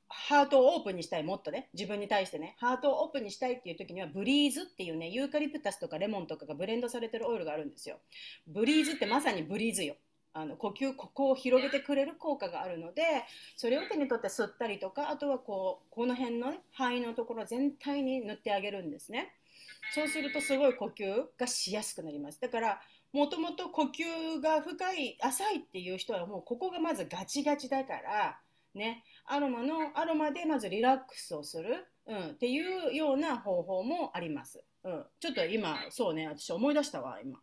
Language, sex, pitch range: Japanese, female, 220-305 Hz